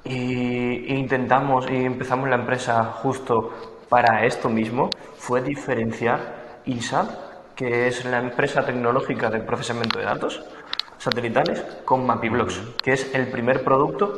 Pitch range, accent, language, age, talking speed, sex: 120-140 Hz, Spanish, Spanish, 20-39, 125 wpm, male